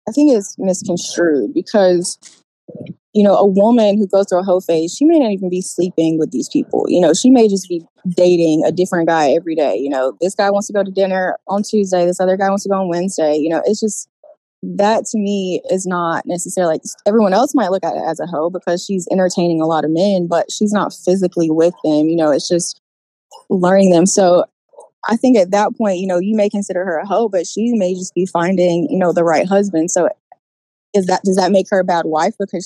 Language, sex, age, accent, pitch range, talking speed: English, female, 20-39, American, 170-205 Hz, 240 wpm